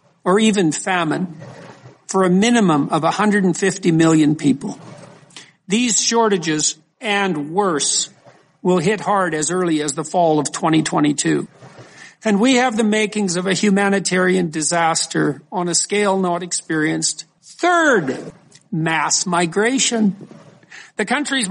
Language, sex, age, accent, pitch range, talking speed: English, male, 50-69, American, 165-210 Hz, 120 wpm